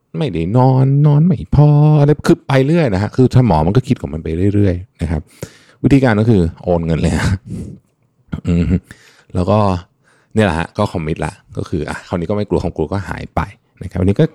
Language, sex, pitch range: Thai, male, 85-125 Hz